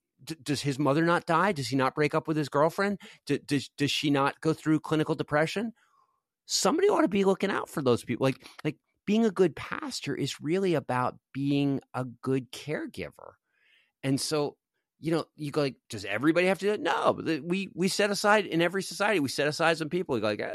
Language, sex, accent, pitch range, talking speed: English, male, American, 135-180 Hz, 215 wpm